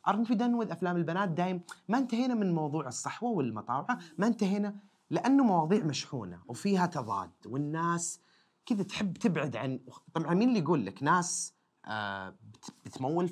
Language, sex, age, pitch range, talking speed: Arabic, male, 30-49, 130-200 Hz, 135 wpm